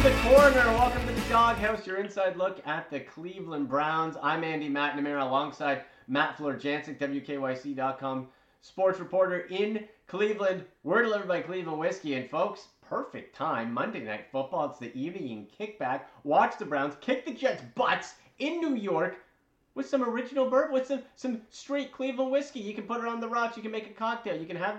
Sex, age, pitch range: male, 30-49, 140-230 Hz